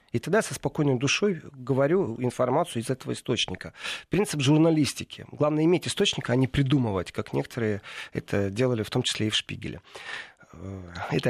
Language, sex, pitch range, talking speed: Russian, male, 115-155 Hz, 155 wpm